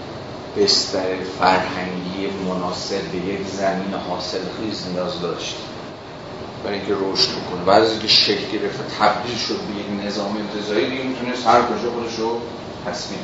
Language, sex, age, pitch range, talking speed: Persian, male, 40-59, 95-115 Hz, 135 wpm